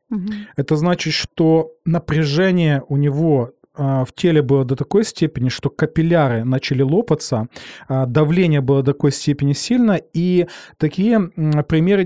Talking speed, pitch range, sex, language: 125 wpm, 140-170 Hz, male, Ukrainian